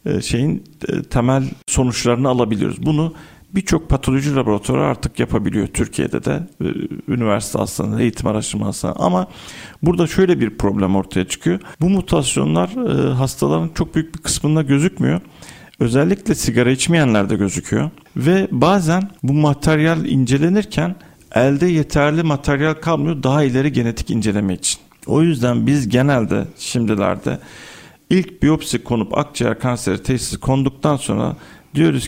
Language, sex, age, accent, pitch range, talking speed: Turkish, male, 50-69, native, 110-155 Hz, 120 wpm